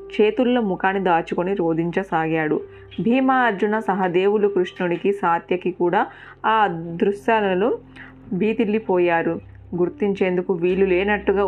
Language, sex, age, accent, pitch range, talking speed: Telugu, female, 30-49, native, 165-200 Hz, 85 wpm